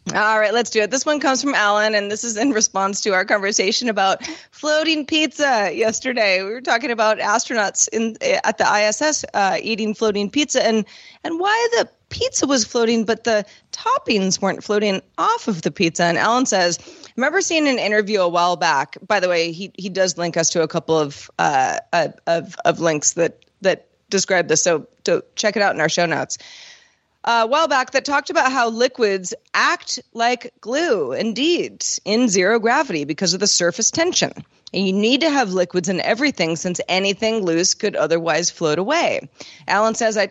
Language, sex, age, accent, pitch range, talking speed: English, female, 30-49, American, 180-270 Hz, 195 wpm